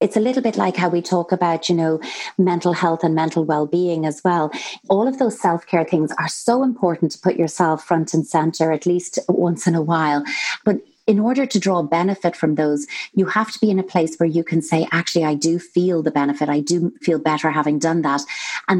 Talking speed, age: 225 wpm, 30-49